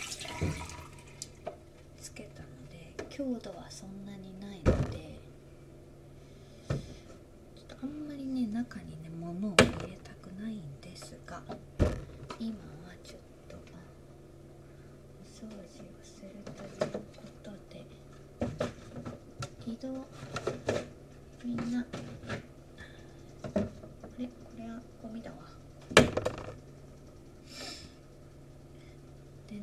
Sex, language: female, Japanese